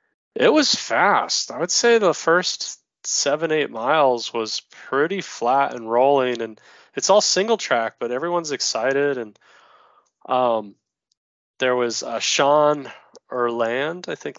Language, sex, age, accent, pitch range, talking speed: English, male, 20-39, American, 105-140 Hz, 140 wpm